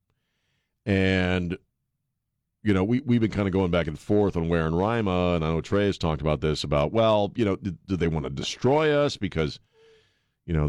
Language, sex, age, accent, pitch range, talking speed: English, male, 50-69, American, 85-120 Hz, 210 wpm